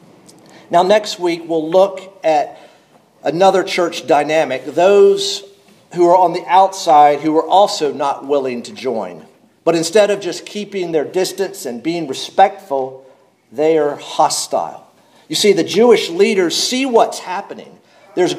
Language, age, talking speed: English, 50-69, 145 wpm